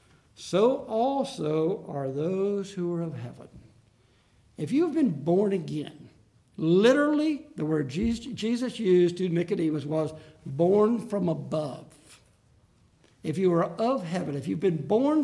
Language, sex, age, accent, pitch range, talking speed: English, male, 60-79, American, 135-200 Hz, 135 wpm